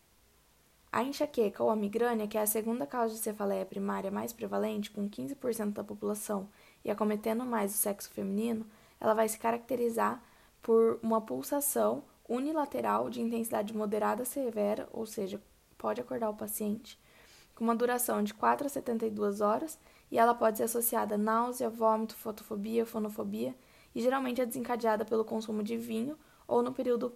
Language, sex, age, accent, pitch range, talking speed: Portuguese, female, 10-29, Brazilian, 210-235 Hz, 160 wpm